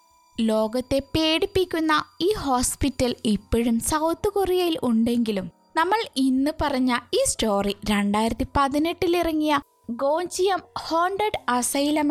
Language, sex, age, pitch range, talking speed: Malayalam, female, 20-39, 230-330 Hz, 90 wpm